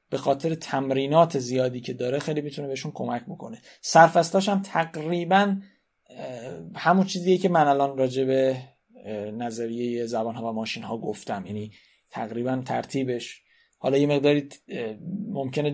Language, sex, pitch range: Persian, male, 125-165 Hz